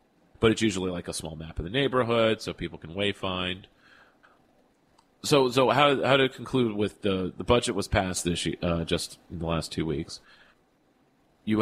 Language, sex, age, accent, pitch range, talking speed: English, male, 40-59, American, 85-110 Hz, 185 wpm